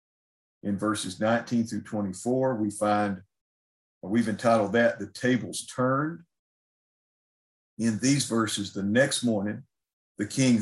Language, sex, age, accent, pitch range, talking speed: English, male, 50-69, American, 100-125 Hz, 125 wpm